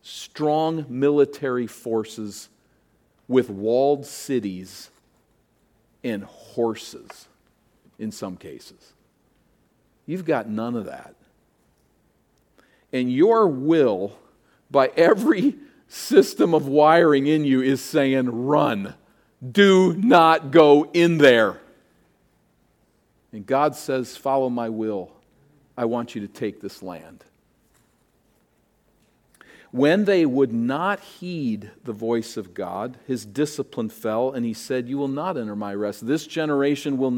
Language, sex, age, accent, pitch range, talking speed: English, male, 50-69, American, 120-150 Hz, 115 wpm